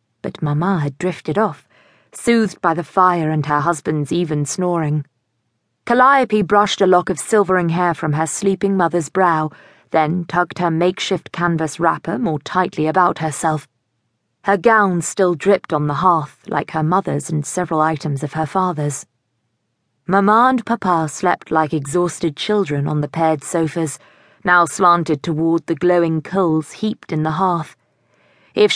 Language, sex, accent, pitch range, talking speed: English, female, British, 150-185 Hz, 155 wpm